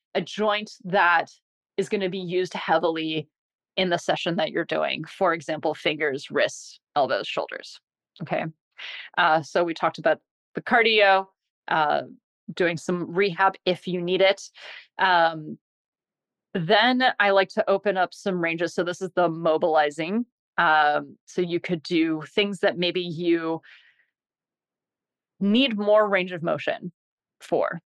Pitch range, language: 170-205 Hz, English